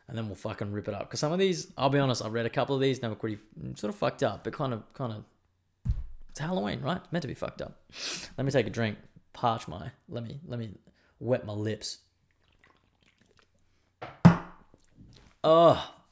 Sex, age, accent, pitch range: male, 20-39, Australian, 100-120 Hz